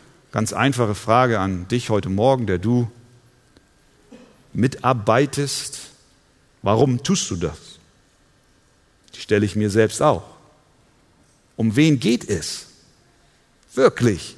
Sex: male